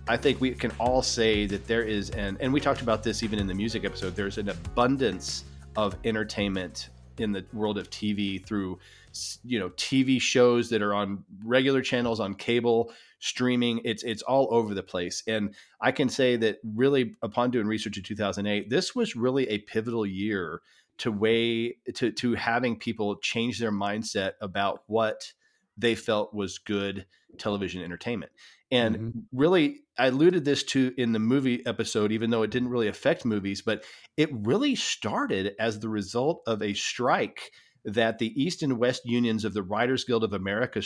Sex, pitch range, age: male, 105-125 Hz, 30-49